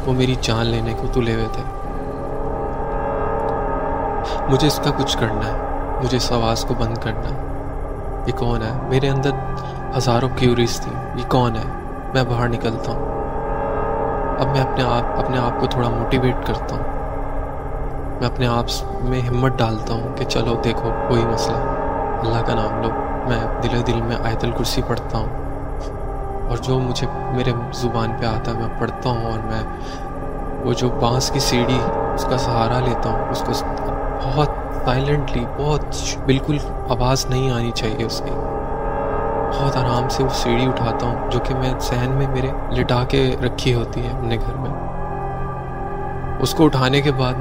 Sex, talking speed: male, 165 wpm